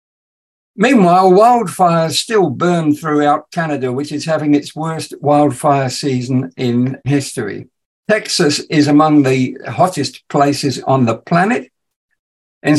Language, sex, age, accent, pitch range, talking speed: English, male, 60-79, British, 140-170 Hz, 115 wpm